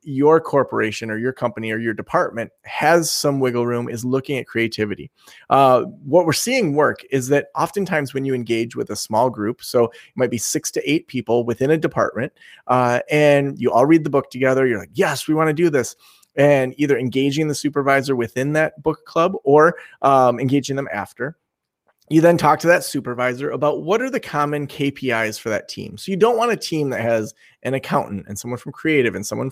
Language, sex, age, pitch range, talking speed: English, male, 30-49, 120-165 Hz, 205 wpm